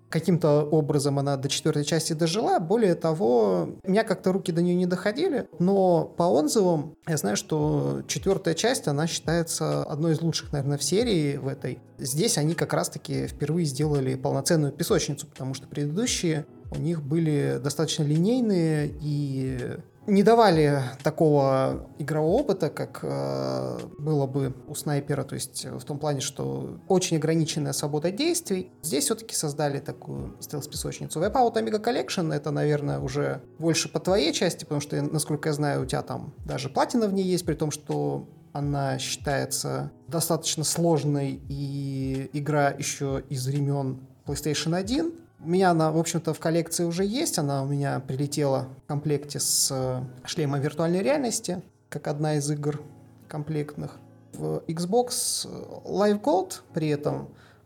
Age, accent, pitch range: 20-39, native, 140-170 Hz